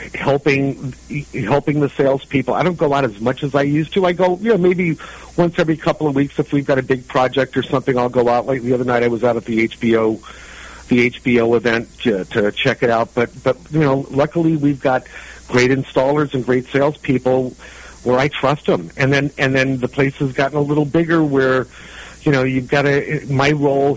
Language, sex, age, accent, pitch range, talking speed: English, male, 50-69, American, 125-150 Hz, 220 wpm